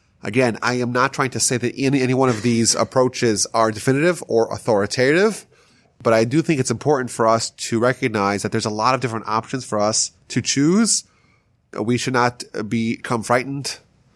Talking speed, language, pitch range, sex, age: 185 wpm, English, 115-140 Hz, male, 30-49